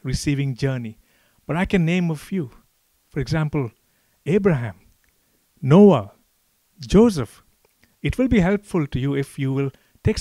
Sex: male